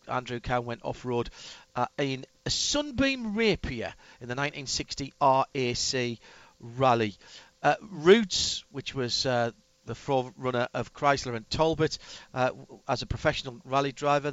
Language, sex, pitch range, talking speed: English, male, 130-160 Hz, 130 wpm